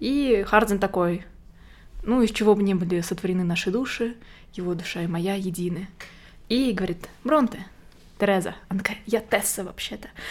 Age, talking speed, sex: 20-39, 150 wpm, female